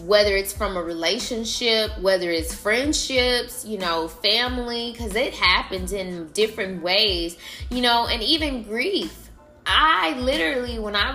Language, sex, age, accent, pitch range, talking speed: English, female, 20-39, American, 200-245 Hz, 140 wpm